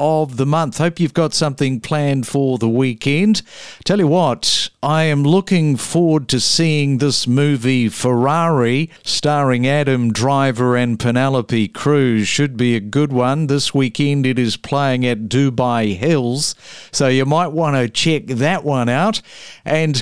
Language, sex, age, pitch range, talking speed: English, male, 50-69, 125-165 Hz, 155 wpm